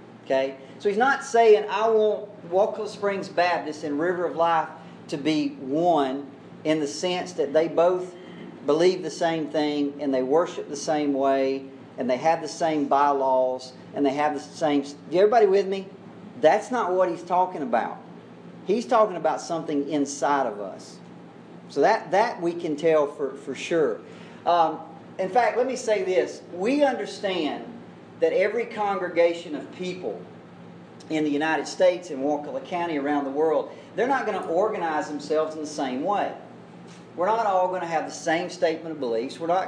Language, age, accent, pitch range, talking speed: English, 40-59, American, 145-190 Hz, 175 wpm